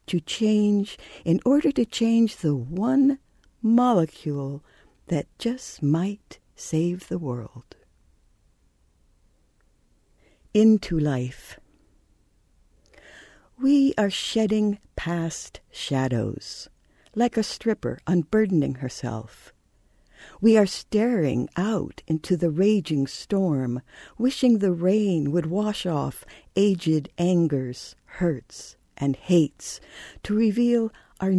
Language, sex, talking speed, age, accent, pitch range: English, female, 95 wpm, 60-79, American, 155-215 Hz